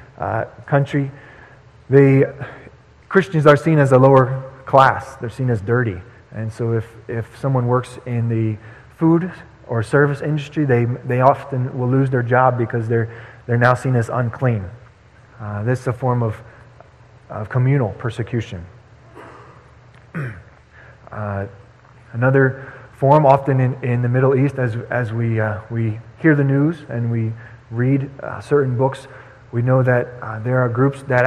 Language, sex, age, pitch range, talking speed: English, male, 20-39, 115-130 Hz, 155 wpm